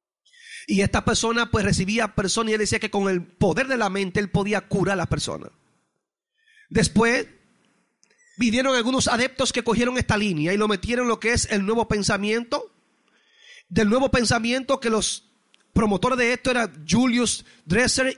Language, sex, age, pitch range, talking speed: Spanish, male, 30-49, 220-275 Hz, 170 wpm